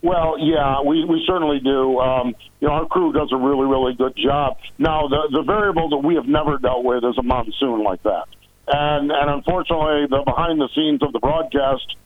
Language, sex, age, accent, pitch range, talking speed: English, male, 50-69, American, 130-160 Hz, 210 wpm